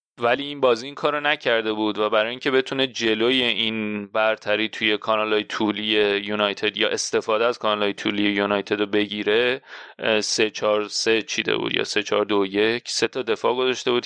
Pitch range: 105-120 Hz